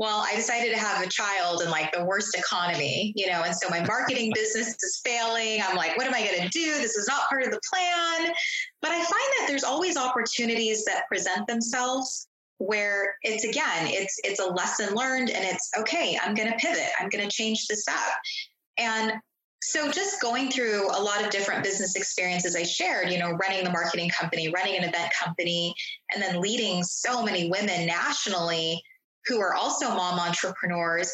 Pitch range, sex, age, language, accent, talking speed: 185-260 Hz, female, 20-39, English, American, 195 wpm